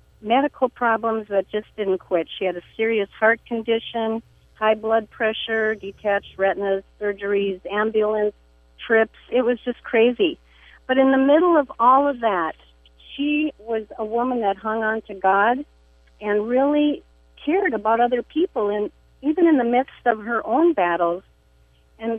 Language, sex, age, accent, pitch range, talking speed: English, female, 50-69, American, 190-245 Hz, 155 wpm